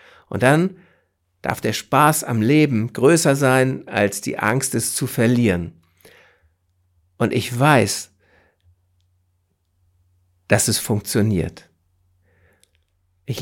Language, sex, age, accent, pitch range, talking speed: German, male, 60-79, German, 95-140 Hz, 100 wpm